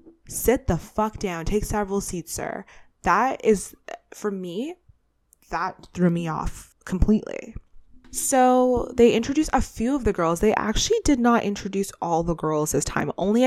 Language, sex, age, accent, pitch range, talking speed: English, female, 20-39, American, 170-215 Hz, 160 wpm